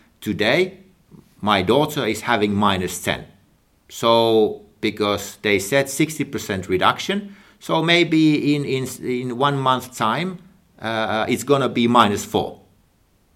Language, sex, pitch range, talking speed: Swedish, male, 100-130 Hz, 125 wpm